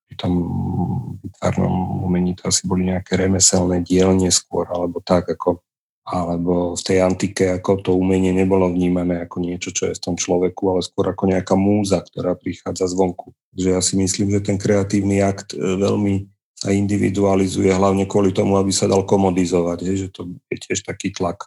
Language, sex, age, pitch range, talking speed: Slovak, male, 40-59, 90-100 Hz, 170 wpm